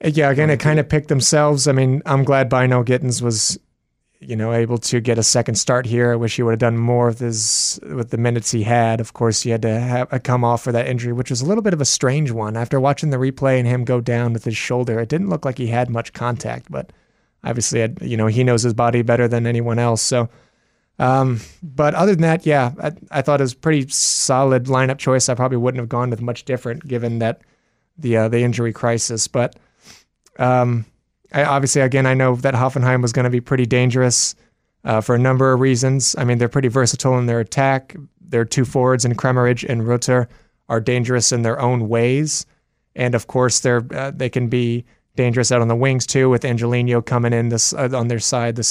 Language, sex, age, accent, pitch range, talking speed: English, male, 20-39, American, 115-130 Hz, 225 wpm